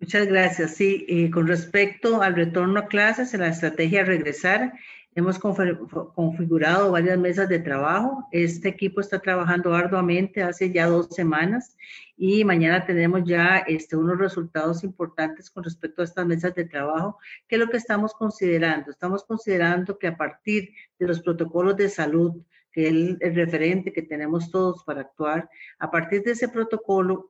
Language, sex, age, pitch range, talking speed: Spanish, female, 40-59, 165-200 Hz, 165 wpm